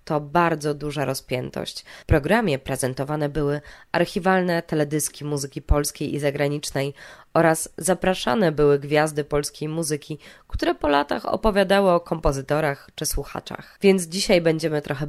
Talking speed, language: 125 wpm, Polish